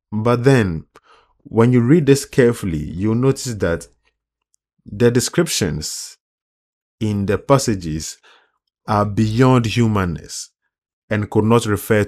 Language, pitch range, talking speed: English, 90-115 Hz, 110 wpm